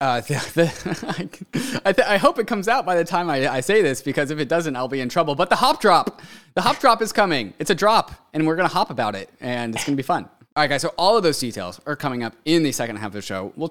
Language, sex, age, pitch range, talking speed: English, male, 20-39, 115-165 Hz, 290 wpm